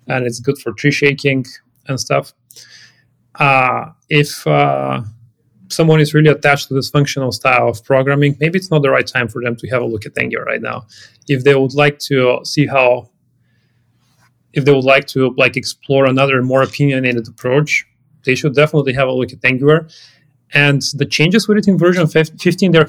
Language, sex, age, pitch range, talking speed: English, male, 30-49, 125-150 Hz, 185 wpm